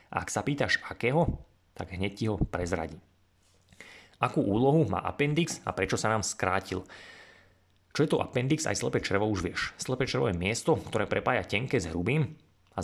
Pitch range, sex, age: 90-110 Hz, male, 30-49